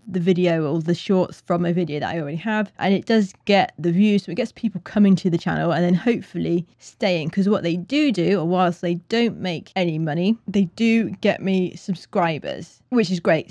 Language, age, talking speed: English, 20-39, 220 wpm